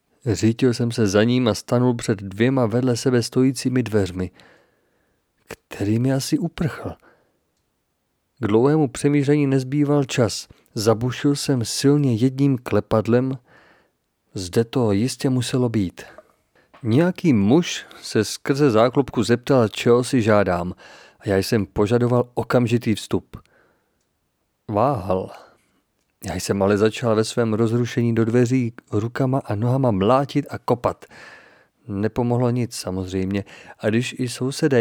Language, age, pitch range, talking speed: Czech, 40-59, 110-130 Hz, 120 wpm